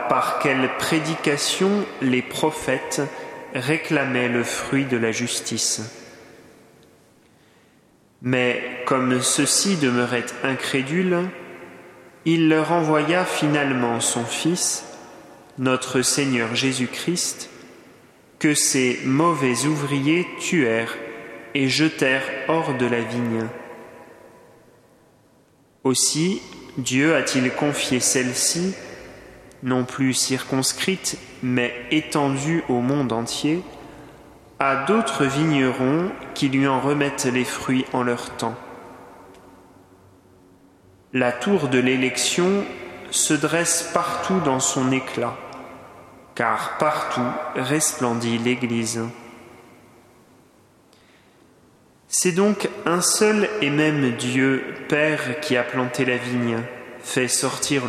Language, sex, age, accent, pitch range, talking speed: French, male, 30-49, French, 120-155 Hz, 95 wpm